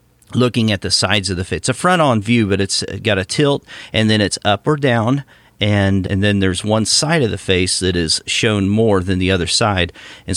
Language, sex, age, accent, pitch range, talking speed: English, male, 40-59, American, 95-125 Hz, 230 wpm